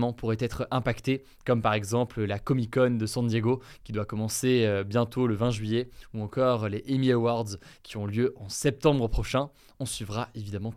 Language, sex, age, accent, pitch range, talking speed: French, male, 20-39, French, 115-150 Hz, 185 wpm